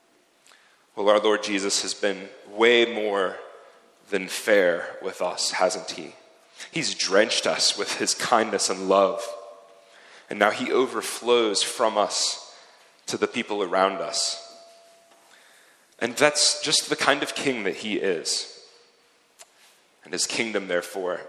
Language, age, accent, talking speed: English, 30-49, American, 130 wpm